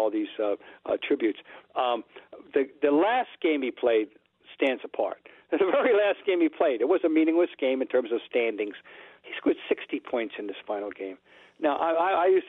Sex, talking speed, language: male, 200 wpm, English